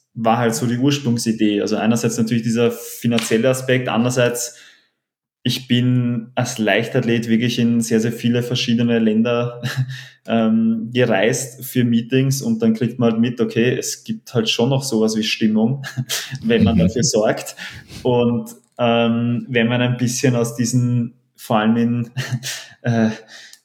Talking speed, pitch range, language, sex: 145 wpm, 115-125 Hz, German, male